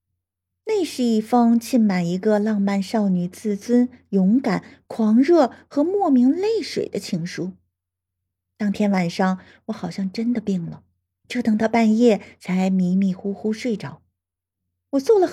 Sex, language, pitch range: female, Chinese, 180-240 Hz